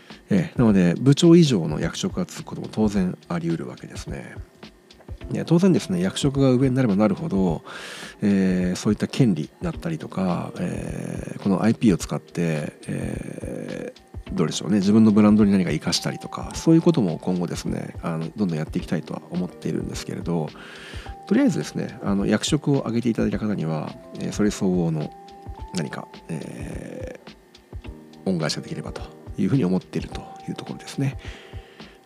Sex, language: male, Japanese